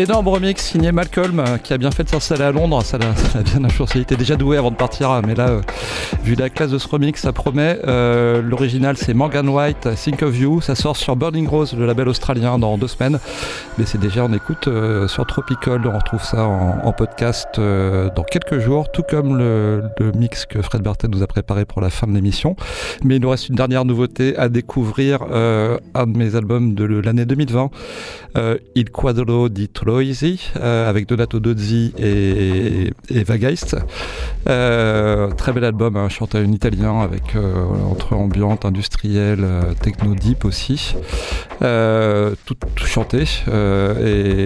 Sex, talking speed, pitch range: male, 190 wpm, 105-130 Hz